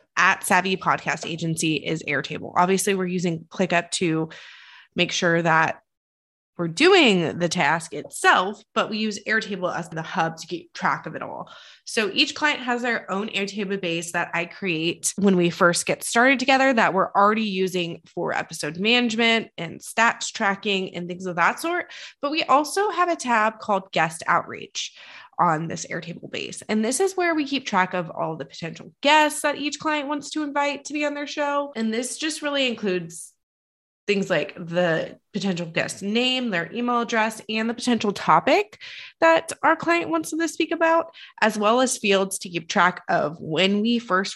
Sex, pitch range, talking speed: female, 170-250 Hz, 185 wpm